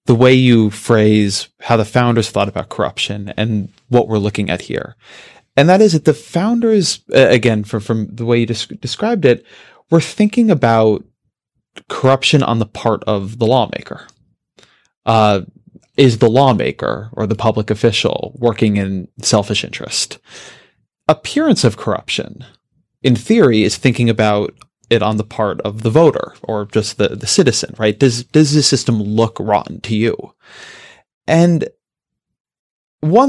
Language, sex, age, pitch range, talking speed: English, male, 30-49, 110-140 Hz, 150 wpm